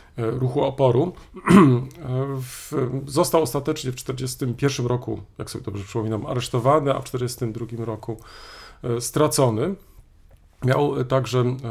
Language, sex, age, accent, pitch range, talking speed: Polish, male, 40-59, native, 115-135 Hz, 100 wpm